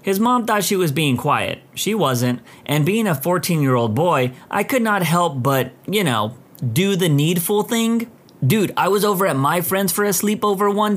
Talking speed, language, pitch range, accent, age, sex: 195 wpm, English, 130-195 Hz, American, 30-49, male